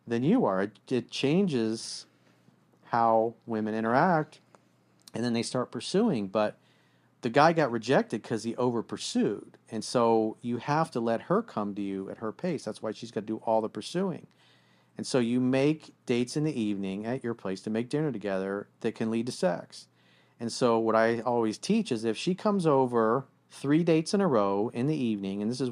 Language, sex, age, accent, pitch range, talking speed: English, male, 40-59, American, 110-160 Hz, 205 wpm